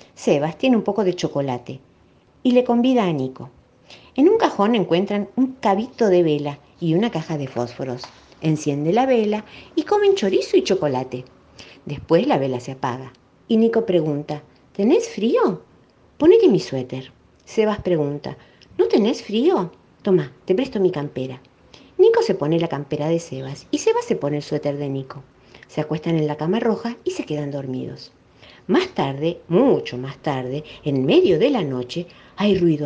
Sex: female